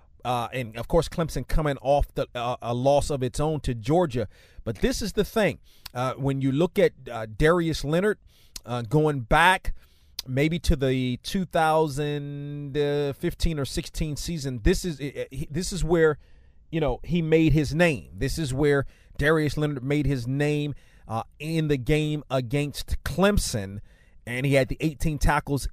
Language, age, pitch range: English, 30-49, 125-155 Hz